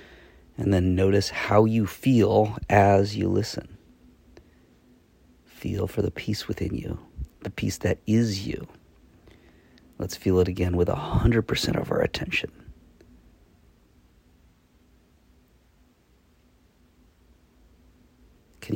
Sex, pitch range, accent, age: male, 80-110 Hz, American, 40-59